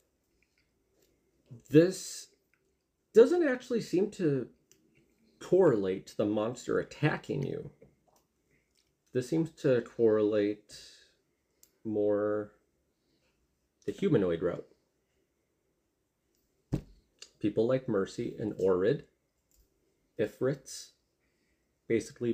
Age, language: 30-49, English